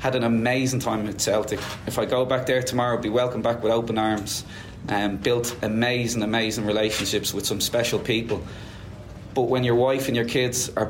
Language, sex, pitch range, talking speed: English, male, 110-135 Hz, 200 wpm